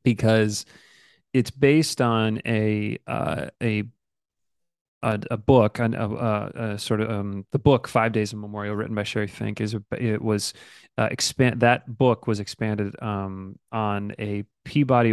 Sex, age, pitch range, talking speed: male, 30-49, 105-120 Hz, 150 wpm